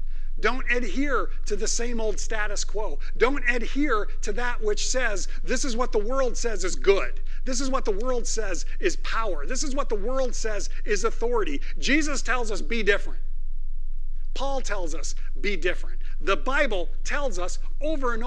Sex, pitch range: male, 205-275 Hz